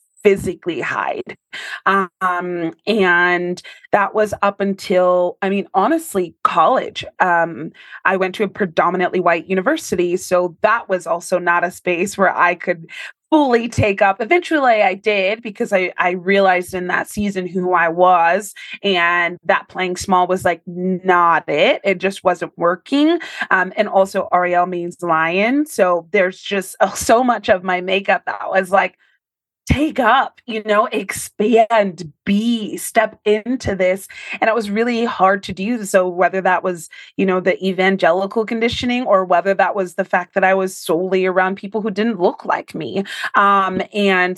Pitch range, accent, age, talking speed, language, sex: 180-210 Hz, American, 20-39, 160 wpm, English, female